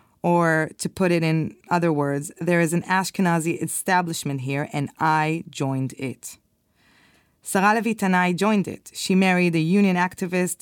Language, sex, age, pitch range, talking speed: Hebrew, female, 20-39, 155-190 Hz, 155 wpm